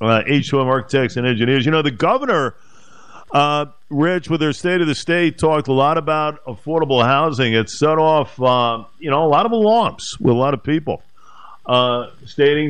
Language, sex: English, male